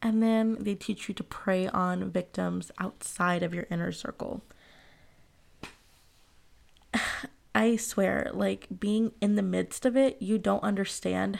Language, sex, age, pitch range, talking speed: English, female, 20-39, 185-225 Hz, 135 wpm